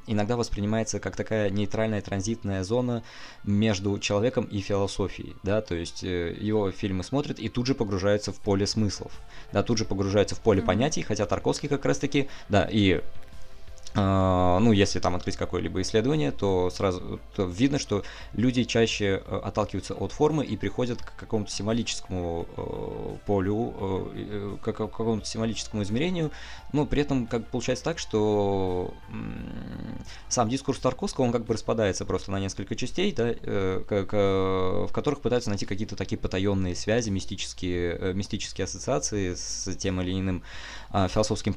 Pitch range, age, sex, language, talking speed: 95-115 Hz, 20-39, male, Russian, 145 wpm